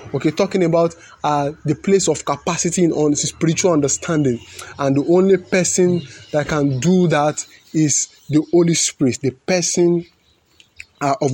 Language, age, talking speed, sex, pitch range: English, 20-39, 145 wpm, male, 140-170 Hz